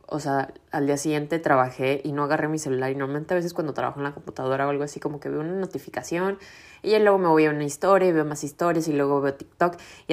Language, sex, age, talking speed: Spanish, female, 20-39, 260 wpm